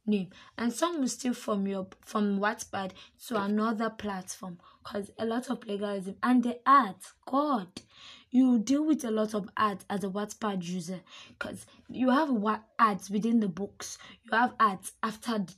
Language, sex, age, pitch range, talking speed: English, female, 20-39, 200-240 Hz, 175 wpm